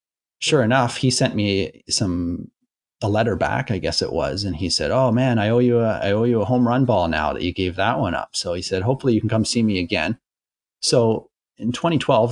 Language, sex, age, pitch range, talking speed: English, male, 30-49, 90-125 Hz, 245 wpm